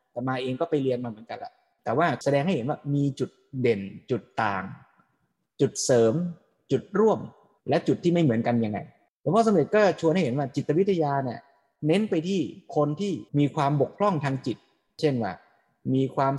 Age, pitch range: 20-39, 125-160 Hz